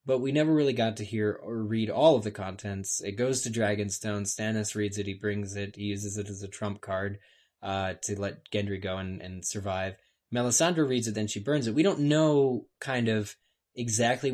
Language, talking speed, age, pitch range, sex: English, 215 wpm, 20-39, 100-120 Hz, male